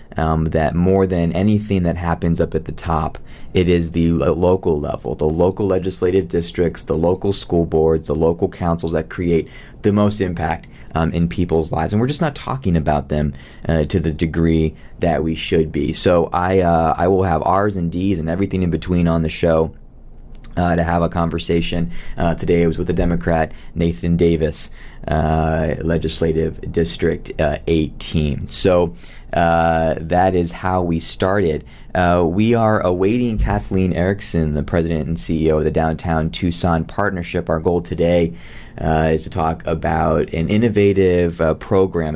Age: 20-39